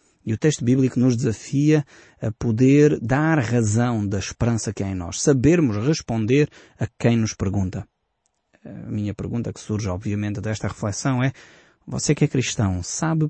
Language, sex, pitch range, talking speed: Portuguese, male, 105-140 Hz, 165 wpm